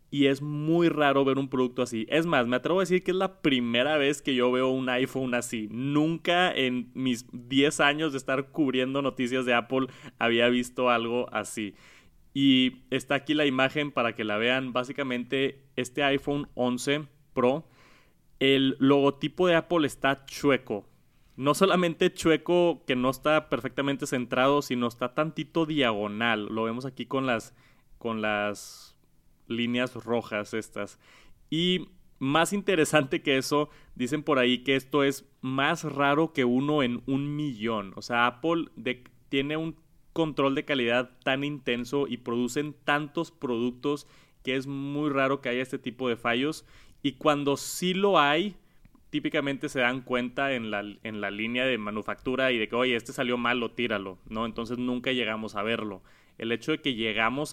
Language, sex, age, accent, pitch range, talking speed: Spanish, male, 30-49, Mexican, 120-145 Hz, 165 wpm